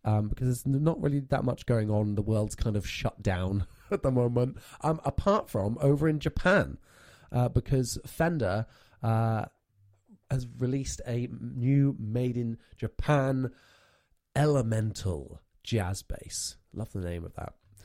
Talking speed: 145 wpm